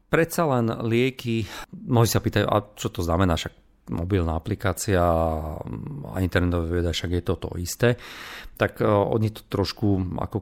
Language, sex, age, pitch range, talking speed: Slovak, male, 40-59, 90-110 Hz, 145 wpm